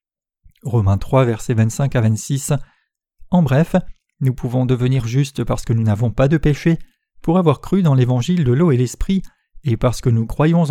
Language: French